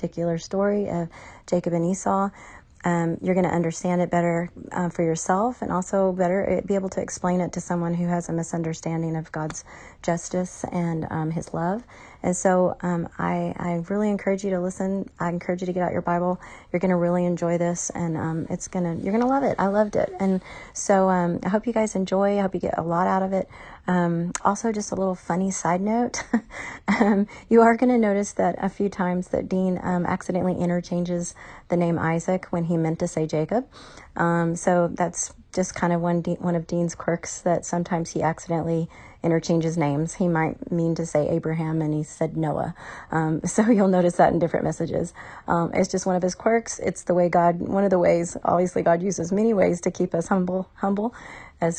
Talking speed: 215 wpm